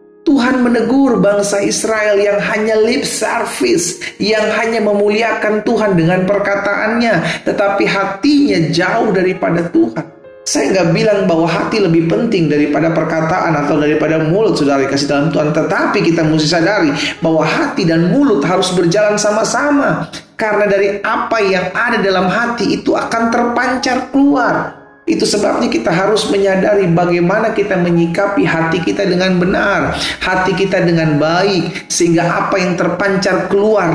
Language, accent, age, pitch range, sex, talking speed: Indonesian, native, 30-49, 160-210 Hz, male, 140 wpm